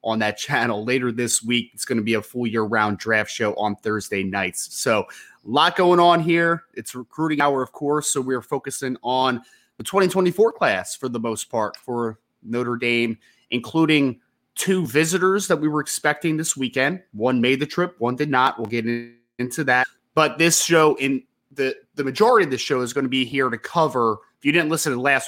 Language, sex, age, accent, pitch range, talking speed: English, male, 30-49, American, 120-155 Hz, 205 wpm